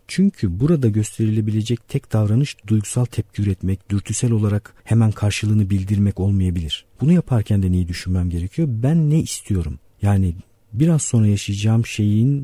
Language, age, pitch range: Turkish, 50-69, 95-120 Hz